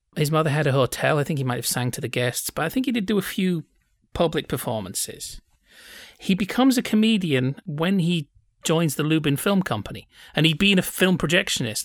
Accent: British